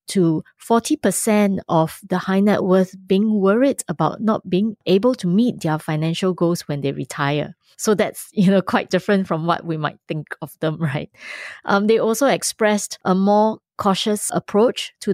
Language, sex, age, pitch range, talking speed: English, female, 20-39, 170-210 Hz, 165 wpm